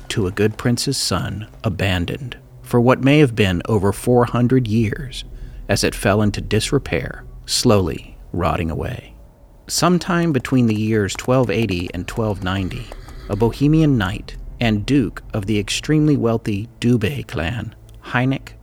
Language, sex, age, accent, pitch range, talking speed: English, male, 40-59, American, 105-130 Hz, 130 wpm